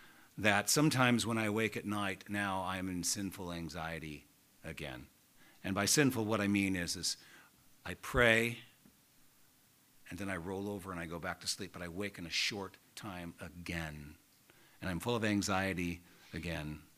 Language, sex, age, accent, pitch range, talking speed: English, male, 50-69, American, 90-115 Hz, 170 wpm